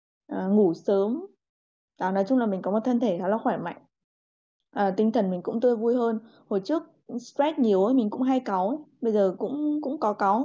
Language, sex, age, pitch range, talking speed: Vietnamese, female, 20-39, 185-245 Hz, 225 wpm